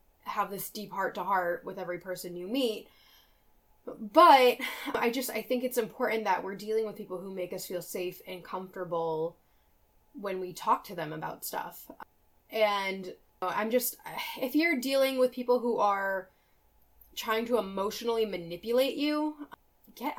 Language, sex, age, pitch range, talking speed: English, female, 10-29, 180-240 Hz, 160 wpm